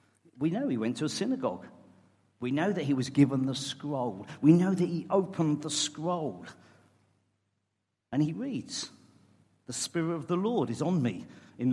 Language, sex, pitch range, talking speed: English, male, 125-195 Hz, 175 wpm